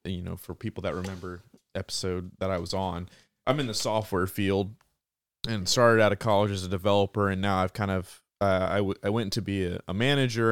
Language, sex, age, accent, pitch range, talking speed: English, male, 20-39, American, 95-110 Hz, 230 wpm